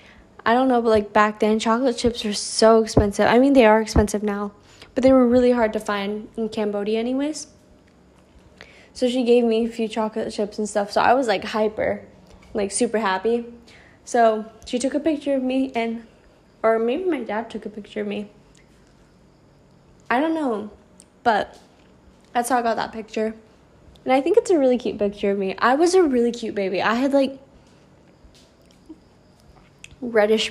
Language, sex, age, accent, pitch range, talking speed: English, female, 10-29, American, 205-240 Hz, 185 wpm